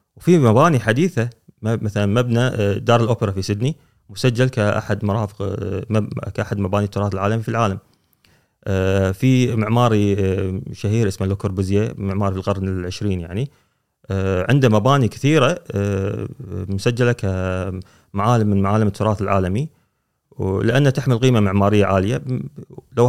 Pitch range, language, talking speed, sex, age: 100-125 Hz, Arabic, 110 wpm, male, 30-49